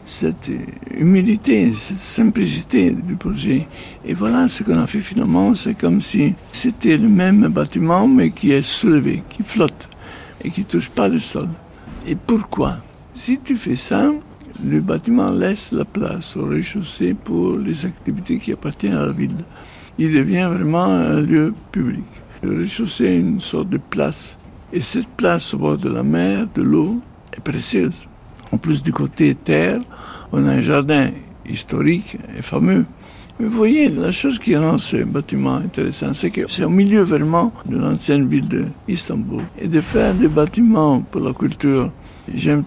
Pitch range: 145-220 Hz